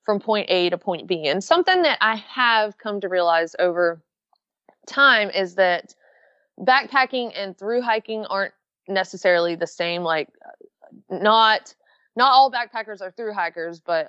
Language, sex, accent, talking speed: English, female, American, 150 wpm